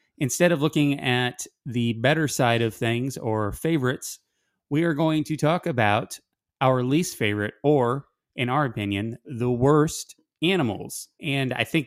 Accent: American